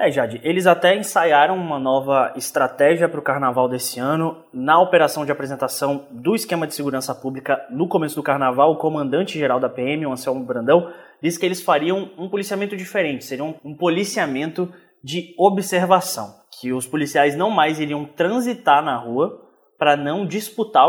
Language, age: Portuguese, 20-39